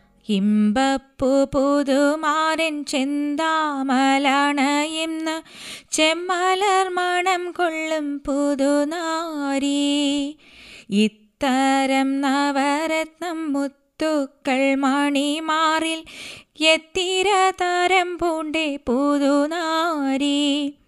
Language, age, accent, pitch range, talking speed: Malayalam, 20-39, native, 280-330 Hz, 40 wpm